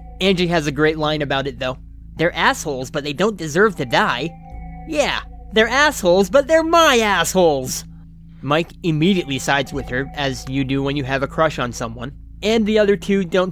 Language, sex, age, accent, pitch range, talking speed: English, male, 30-49, American, 135-175 Hz, 190 wpm